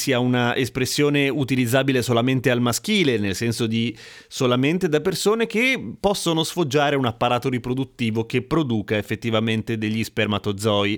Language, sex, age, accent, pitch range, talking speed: Italian, male, 30-49, native, 115-155 Hz, 130 wpm